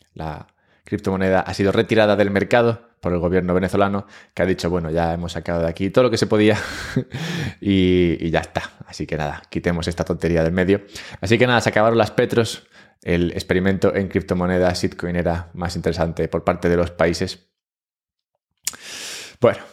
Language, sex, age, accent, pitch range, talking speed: English, male, 20-39, Spanish, 90-110 Hz, 175 wpm